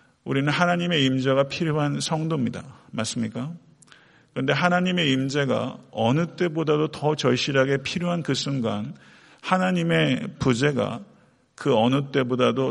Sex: male